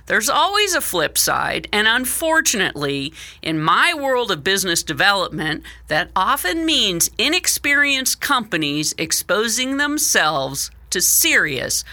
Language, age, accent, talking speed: English, 50-69, American, 110 wpm